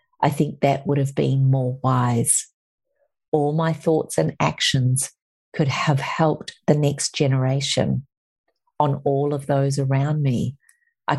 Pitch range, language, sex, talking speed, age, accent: 135-150 Hz, English, female, 140 wpm, 50-69, Australian